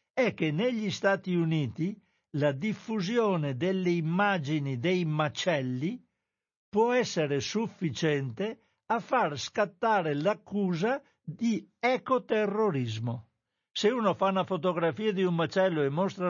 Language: Italian